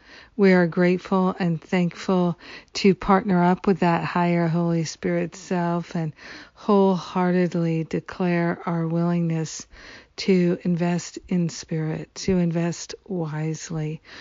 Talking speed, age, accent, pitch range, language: 110 wpm, 50-69, American, 165-190 Hz, English